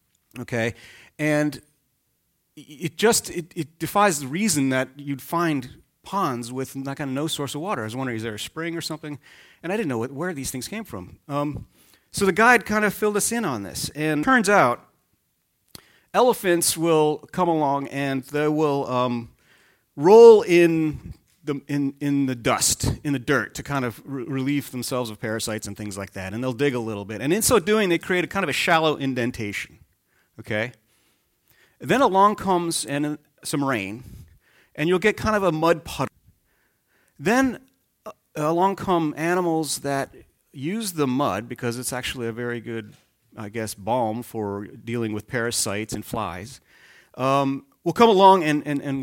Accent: American